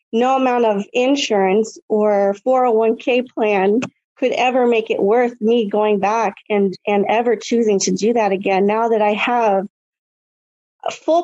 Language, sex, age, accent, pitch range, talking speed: English, female, 40-59, American, 210-245 Hz, 170 wpm